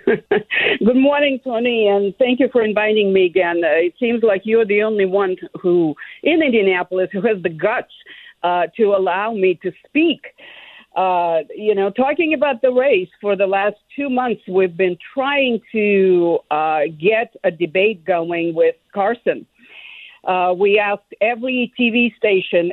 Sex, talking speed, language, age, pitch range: female, 160 wpm, English, 50-69, 180-250 Hz